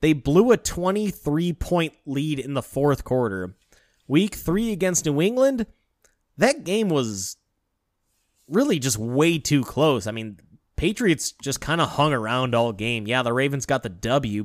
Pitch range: 125-165 Hz